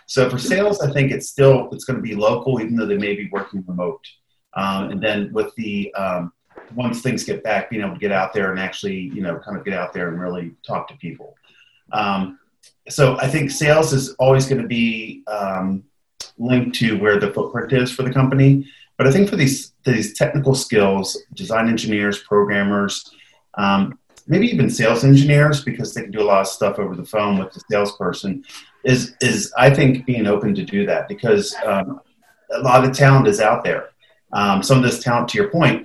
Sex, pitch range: male, 100-135 Hz